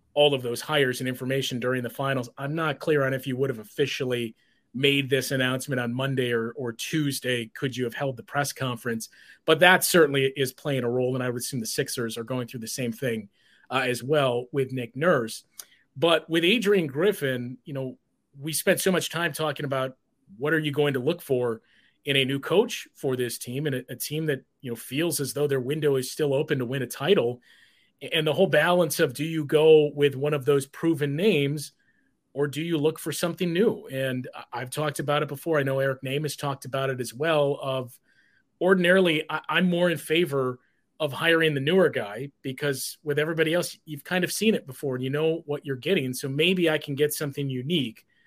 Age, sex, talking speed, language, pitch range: 30-49, male, 215 wpm, English, 130-160 Hz